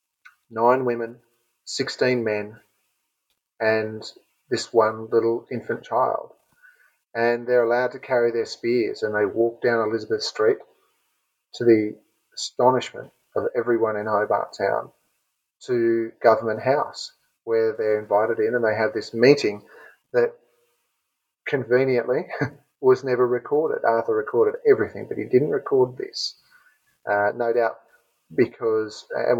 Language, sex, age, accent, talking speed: English, male, 40-59, Australian, 125 wpm